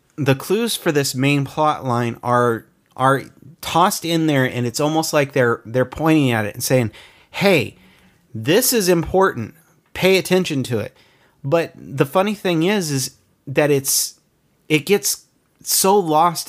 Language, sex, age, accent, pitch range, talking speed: English, male, 30-49, American, 130-160 Hz, 155 wpm